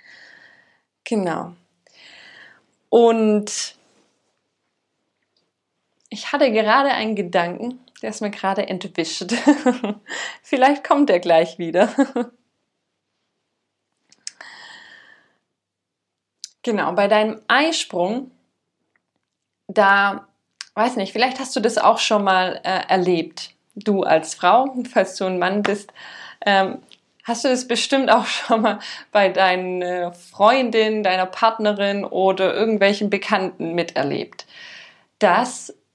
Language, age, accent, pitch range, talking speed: German, 20-39, German, 190-240 Hz, 100 wpm